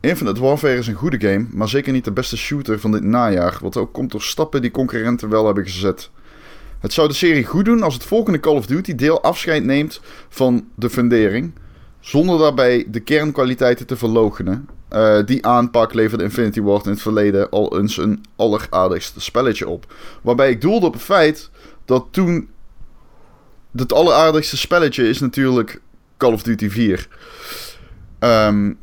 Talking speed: 170 wpm